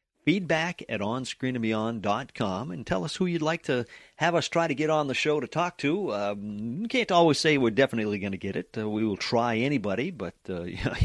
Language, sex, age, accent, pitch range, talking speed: English, male, 40-59, American, 95-125 Hz, 205 wpm